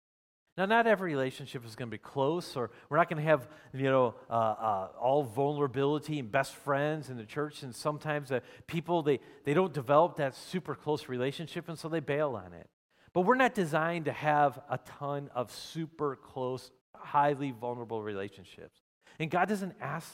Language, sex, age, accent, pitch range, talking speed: English, male, 40-59, American, 130-165 Hz, 190 wpm